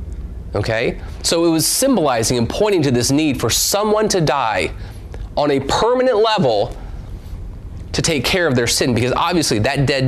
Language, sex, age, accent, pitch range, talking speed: English, male, 30-49, American, 100-150 Hz, 165 wpm